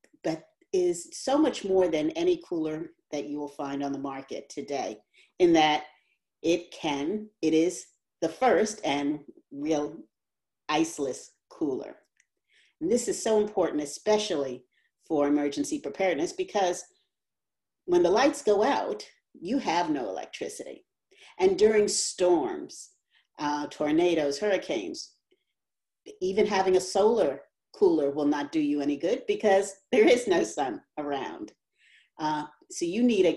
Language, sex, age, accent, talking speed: English, female, 40-59, American, 135 wpm